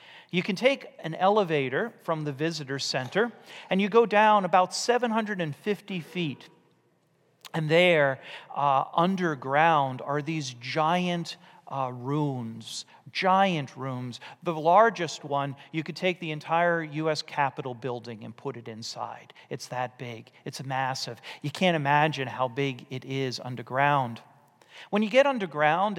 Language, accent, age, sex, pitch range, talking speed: English, American, 40-59, male, 140-185 Hz, 135 wpm